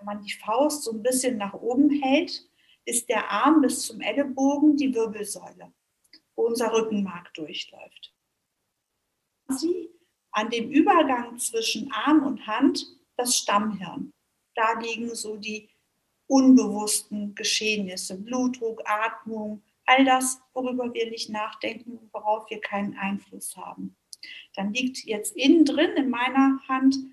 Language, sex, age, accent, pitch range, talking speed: German, female, 60-79, German, 215-275 Hz, 130 wpm